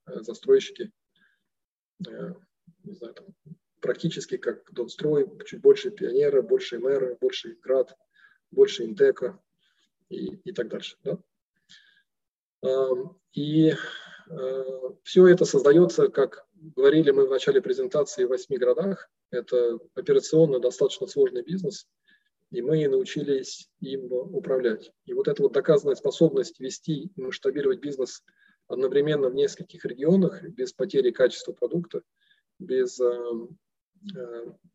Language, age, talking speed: Russian, 20-39, 115 wpm